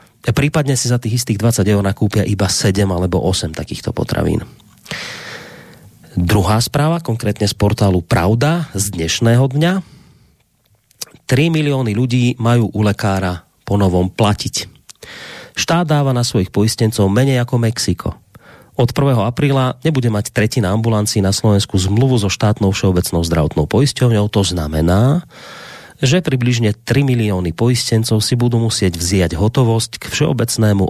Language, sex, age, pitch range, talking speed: Slovak, male, 30-49, 95-125 Hz, 135 wpm